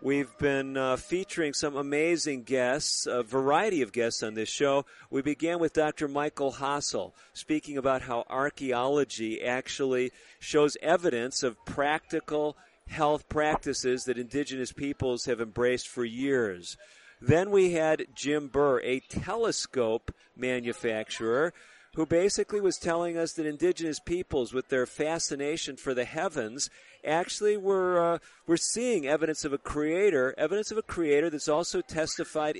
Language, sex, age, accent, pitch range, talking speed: English, male, 50-69, American, 130-170 Hz, 140 wpm